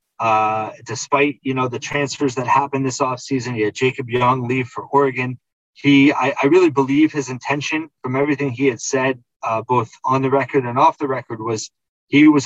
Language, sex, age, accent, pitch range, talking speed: English, male, 20-39, American, 120-140 Hz, 195 wpm